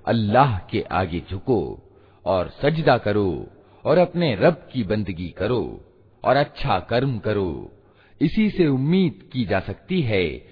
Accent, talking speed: native, 135 wpm